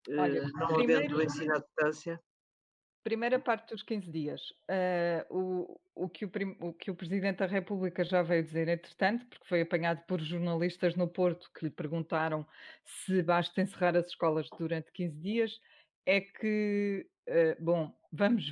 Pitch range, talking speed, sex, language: 170-210 Hz, 135 wpm, female, Portuguese